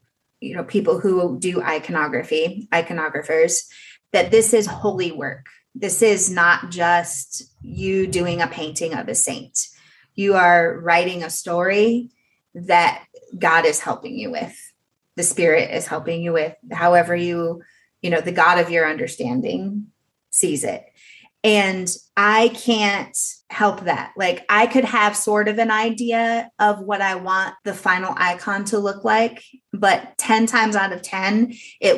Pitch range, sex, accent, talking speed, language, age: 170-220 Hz, female, American, 150 wpm, English, 30-49